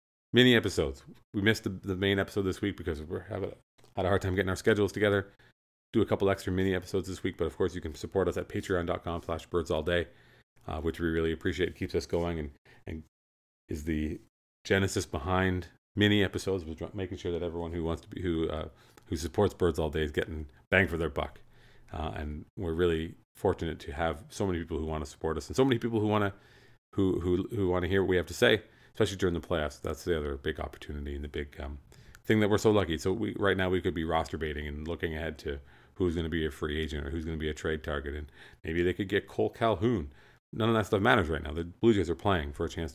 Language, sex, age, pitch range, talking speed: English, male, 30-49, 75-95 Hz, 250 wpm